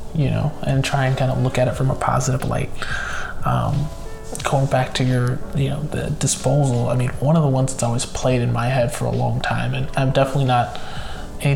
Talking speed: 230 wpm